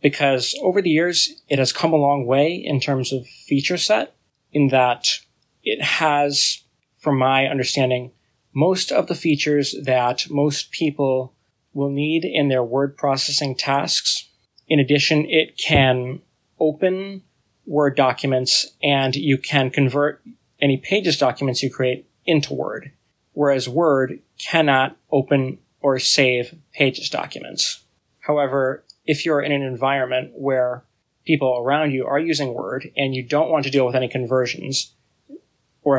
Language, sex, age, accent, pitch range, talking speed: English, male, 20-39, American, 130-145 Hz, 140 wpm